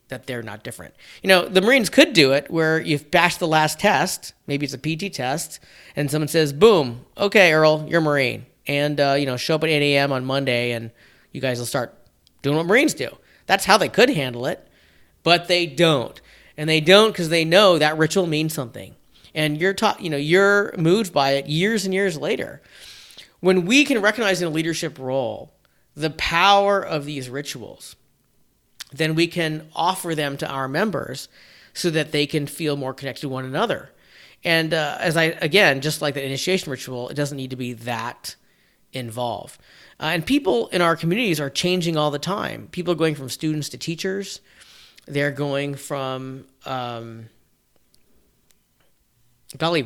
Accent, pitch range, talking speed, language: American, 135-175 Hz, 185 wpm, English